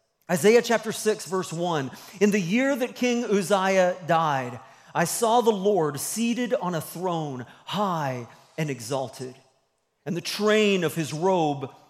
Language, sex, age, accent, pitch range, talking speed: English, male, 40-59, American, 145-205 Hz, 145 wpm